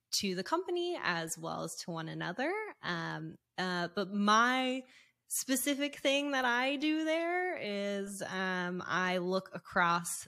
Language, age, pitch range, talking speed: English, 20-39, 170-215 Hz, 140 wpm